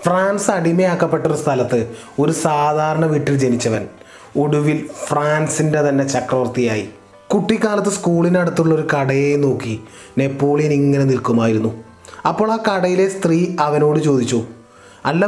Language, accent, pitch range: Malayalam, native, 125-170 Hz